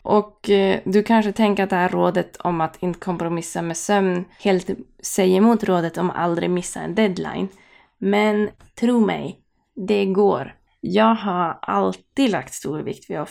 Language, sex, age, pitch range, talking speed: Swedish, female, 20-39, 170-205 Hz, 160 wpm